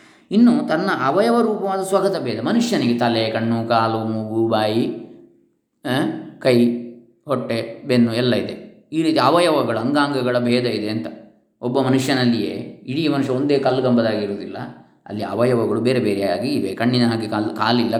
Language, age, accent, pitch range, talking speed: Kannada, 20-39, native, 115-155 Hz, 125 wpm